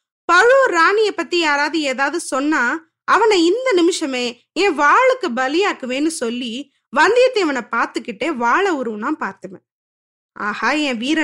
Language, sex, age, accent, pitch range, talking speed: Tamil, female, 20-39, native, 265-360 Hz, 110 wpm